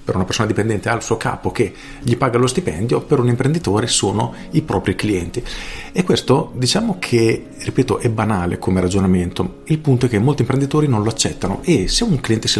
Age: 40-59